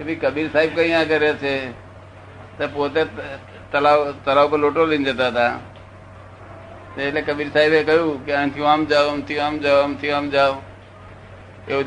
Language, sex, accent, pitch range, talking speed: Gujarati, male, native, 105-150 Hz, 130 wpm